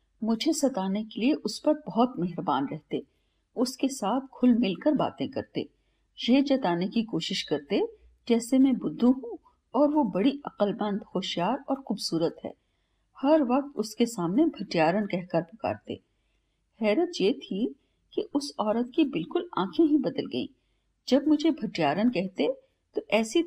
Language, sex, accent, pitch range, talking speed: Hindi, female, native, 195-280 Hz, 145 wpm